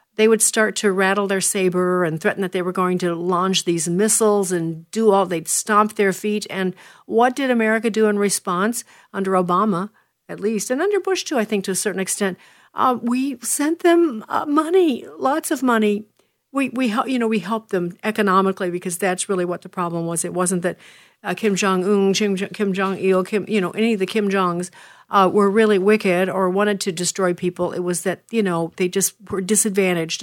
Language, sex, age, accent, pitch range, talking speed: English, female, 50-69, American, 180-215 Hz, 205 wpm